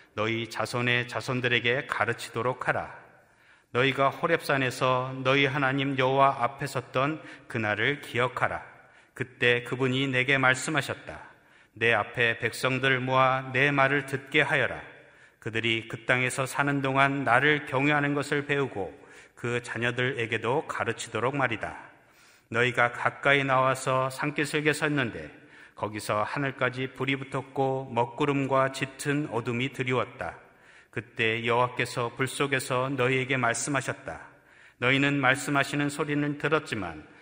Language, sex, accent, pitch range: Korean, male, native, 120-140 Hz